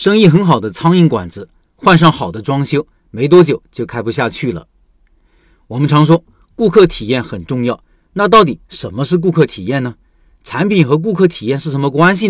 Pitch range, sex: 135-180 Hz, male